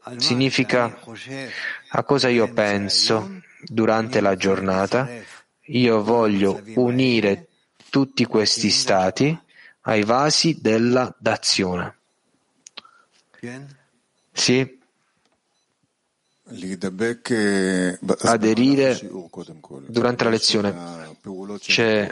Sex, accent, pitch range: male, native, 100-120 Hz